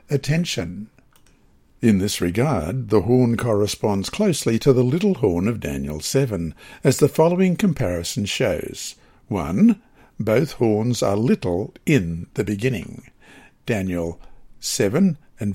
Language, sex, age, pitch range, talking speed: English, male, 60-79, 105-145 Hz, 120 wpm